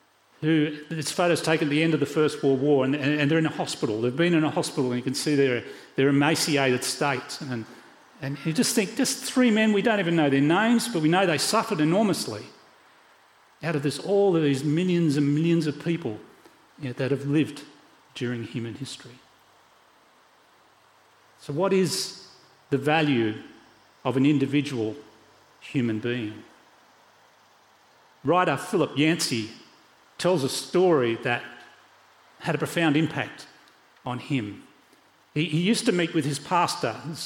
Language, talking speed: English, 165 wpm